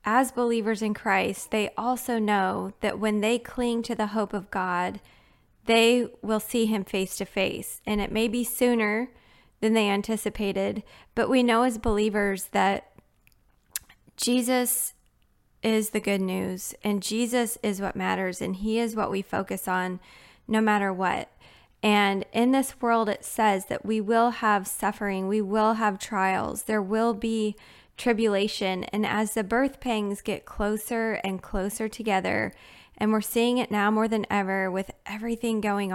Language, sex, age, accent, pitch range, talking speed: English, female, 20-39, American, 200-230 Hz, 160 wpm